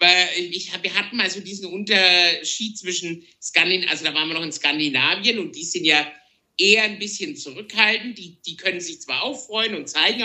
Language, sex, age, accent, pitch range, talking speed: German, male, 50-69, German, 165-210 Hz, 195 wpm